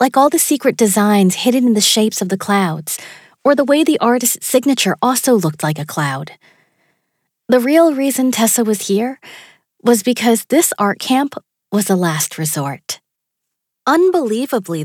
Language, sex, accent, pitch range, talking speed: English, female, American, 185-255 Hz, 160 wpm